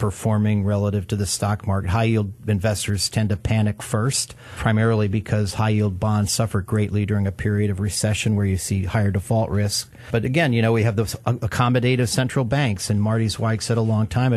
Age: 50-69